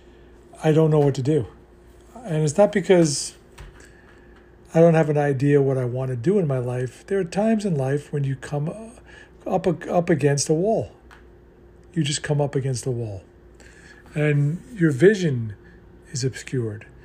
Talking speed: 170 wpm